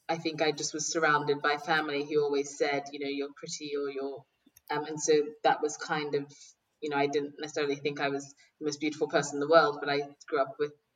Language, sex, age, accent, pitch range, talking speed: English, female, 20-39, British, 145-165 Hz, 240 wpm